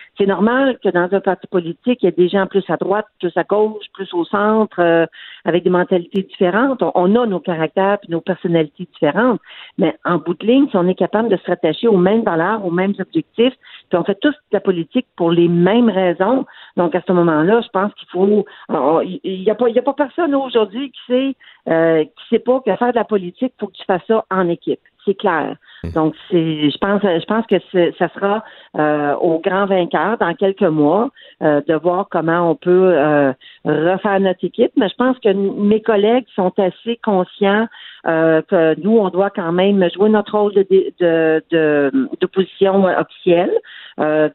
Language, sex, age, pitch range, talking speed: French, female, 50-69, 170-210 Hz, 210 wpm